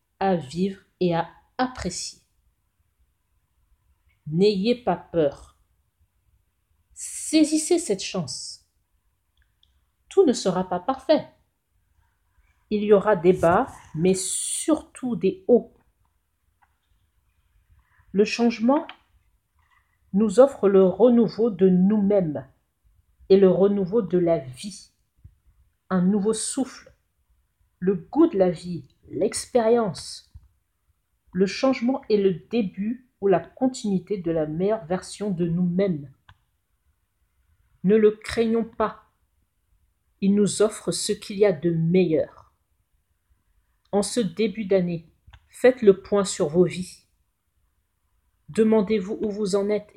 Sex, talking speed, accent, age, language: female, 110 wpm, French, 50-69, French